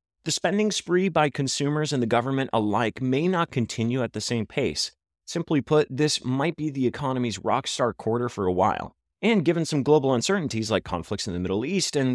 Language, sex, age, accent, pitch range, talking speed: English, male, 30-49, American, 110-155 Hz, 200 wpm